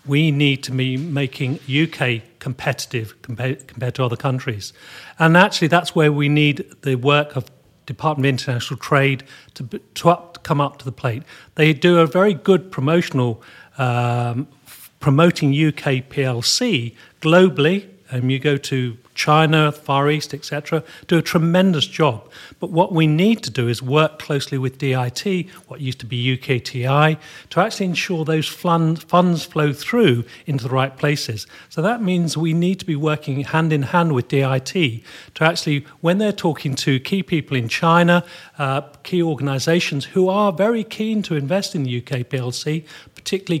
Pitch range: 135-170 Hz